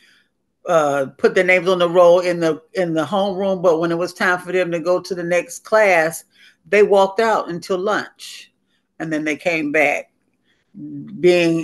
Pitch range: 160-195 Hz